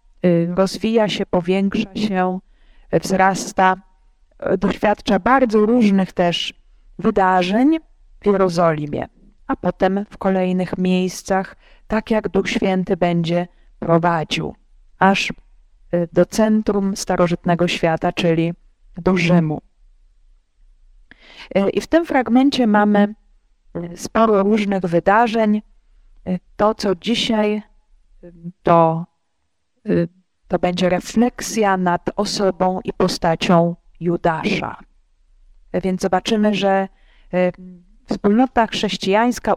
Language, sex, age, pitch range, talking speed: Polish, female, 30-49, 180-235 Hz, 85 wpm